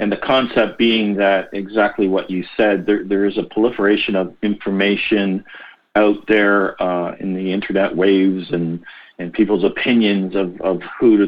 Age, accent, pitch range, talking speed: 50-69, American, 95-100 Hz, 165 wpm